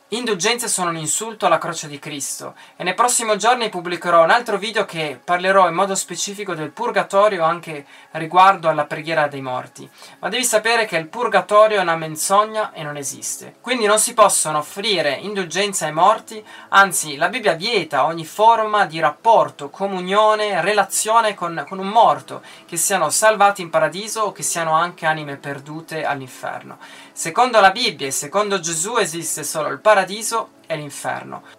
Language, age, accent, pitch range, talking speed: Italian, 20-39, native, 160-215 Hz, 165 wpm